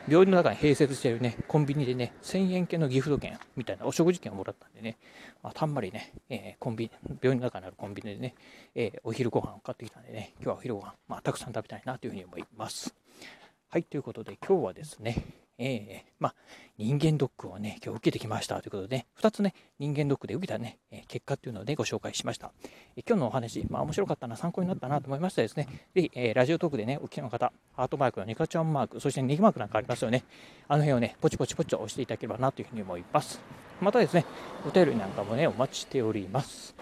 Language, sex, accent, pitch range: Japanese, male, native, 115-155 Hz